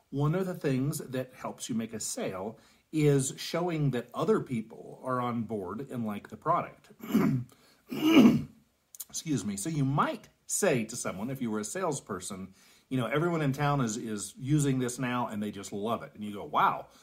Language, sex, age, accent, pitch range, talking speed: English, male, 40-59, American, 120-170 Hz, 190 wpm